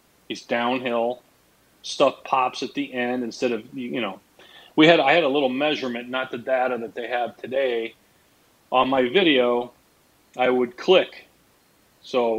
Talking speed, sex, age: 155 wpm, male, 40-59